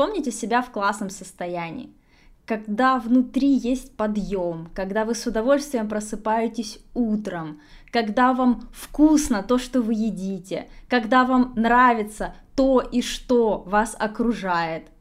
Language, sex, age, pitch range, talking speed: Russian, female, 20-39, 210-265 Hz, 120 wpm